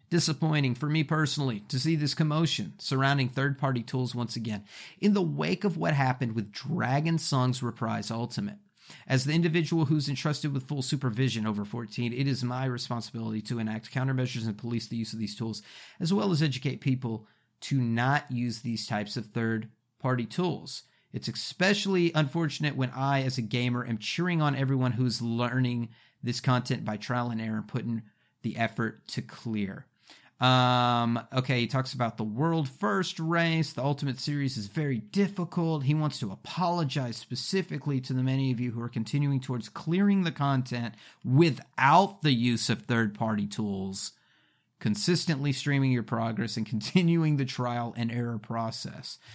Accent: American